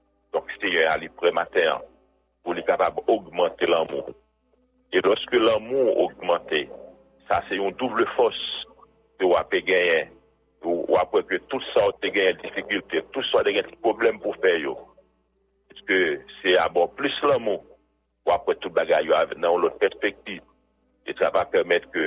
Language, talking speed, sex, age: English, 160 wpm, male, 60-79